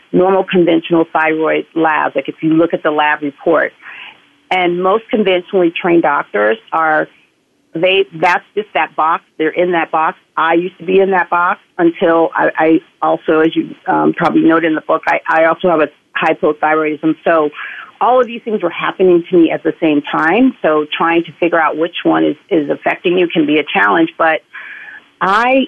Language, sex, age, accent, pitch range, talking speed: English, female, 40-59, American, 160-195 Hz, 195 wpm